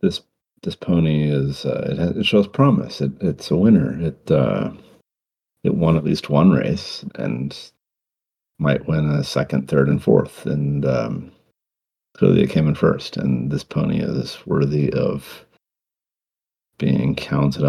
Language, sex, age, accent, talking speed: English, male, 50-69, American, 145 wpm